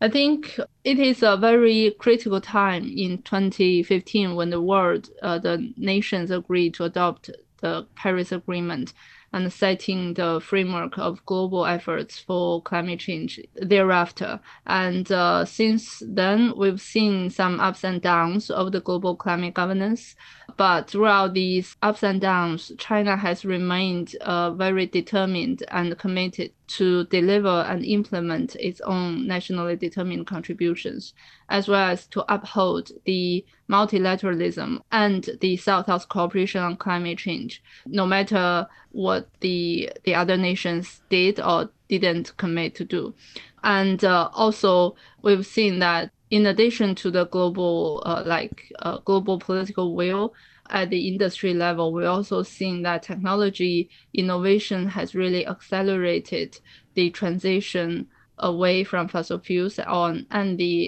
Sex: female